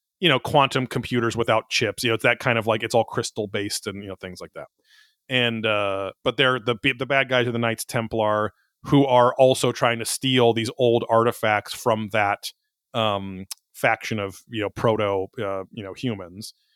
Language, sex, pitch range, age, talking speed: English, male, 105-125 Hz, 30-49, 200 wpm